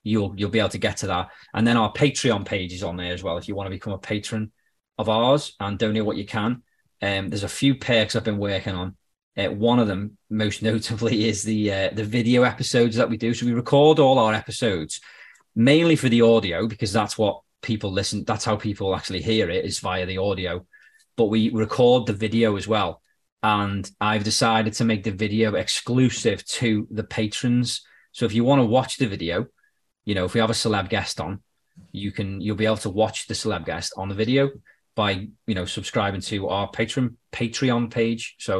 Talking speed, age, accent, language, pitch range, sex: 215 wpm, 30-49, British, English, 100-120 Hz, male